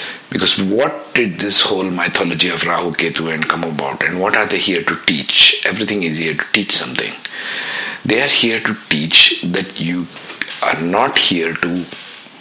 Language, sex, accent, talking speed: English, male, Indian, 175 wpm